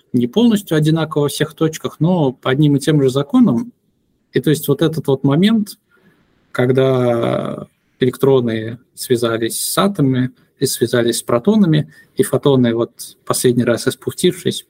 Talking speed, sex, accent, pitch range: 145 wpm, male, native, 125-155 Hz